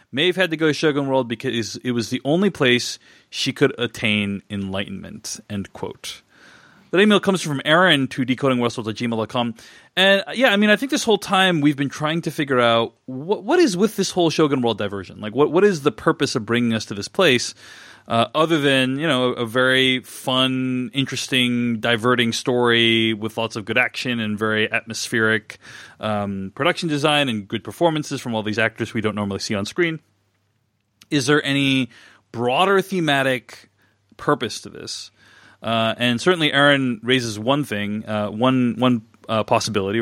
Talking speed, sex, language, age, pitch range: 175 wpm, male, English, 30-49, 110-140 Hz